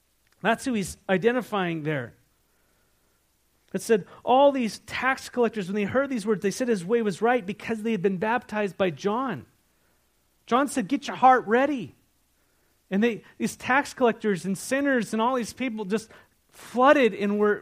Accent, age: American, 30-49